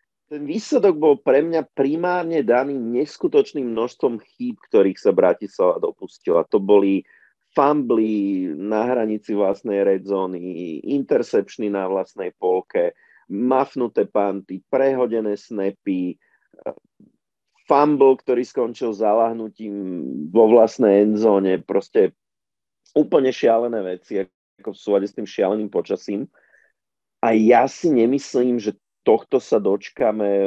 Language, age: Slovak, 40-59